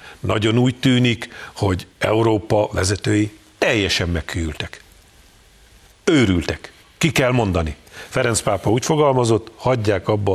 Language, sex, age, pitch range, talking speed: Hungarian, male, 50-69, 95-120 Hz, 105 wpm